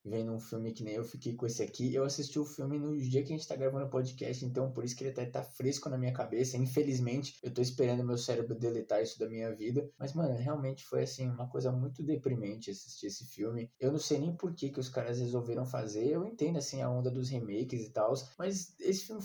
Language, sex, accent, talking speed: Portuguese, male, Brazilian, 245 wpm